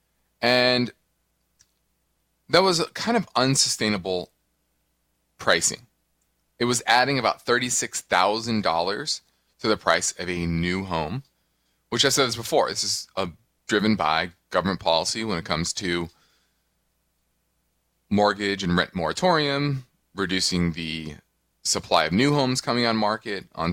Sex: male